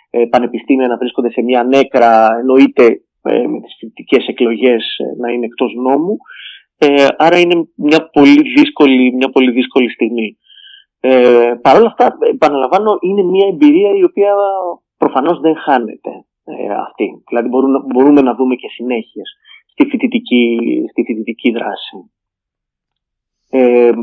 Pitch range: 125-185 Hz